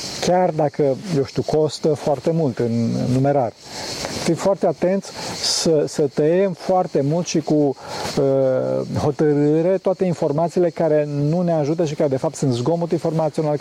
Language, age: Romanian, 40-59